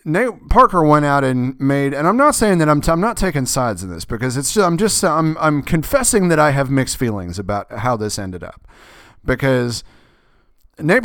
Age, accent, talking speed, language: 30-49, American, 210 wpm, English